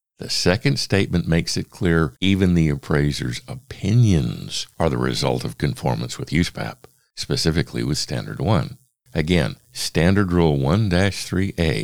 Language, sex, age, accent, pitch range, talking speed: English, male, 50-69, American, 80-115 Hz, 125 wpm